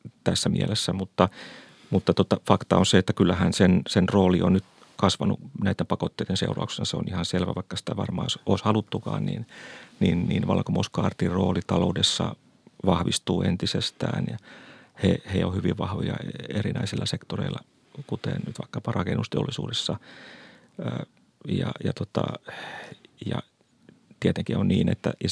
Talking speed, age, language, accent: 135 wpm, 30-49, Finnish, native